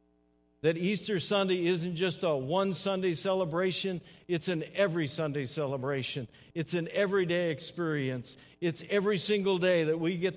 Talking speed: 145 wpm